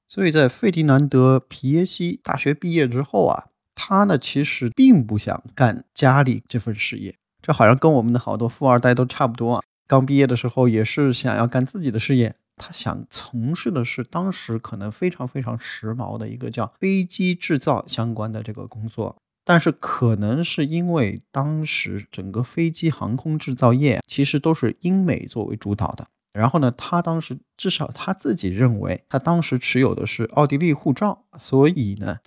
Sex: male